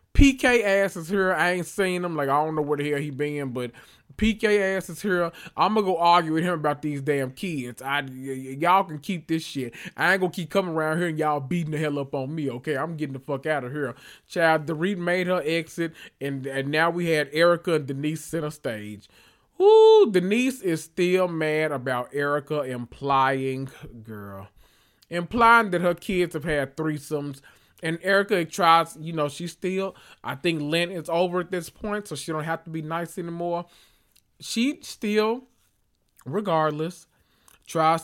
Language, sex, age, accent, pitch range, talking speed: English, male, 20-39, American, 145-180 Hz, 195 wpm